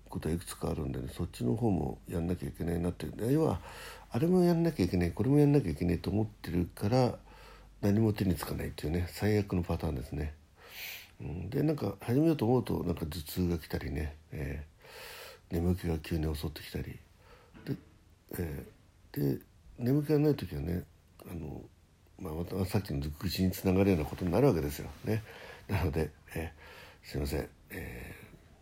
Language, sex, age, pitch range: Japanese, male, 60-79, 80-110 Hz